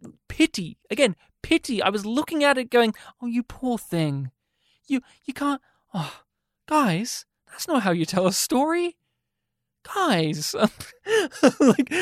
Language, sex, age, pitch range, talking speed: English, male, 20-39, 185-255 Hz, 135 wpm